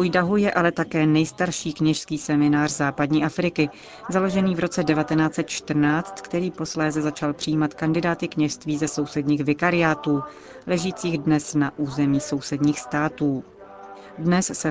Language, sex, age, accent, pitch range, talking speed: Czech, female, 40-59, native, 150-170 Hz, 120 wpm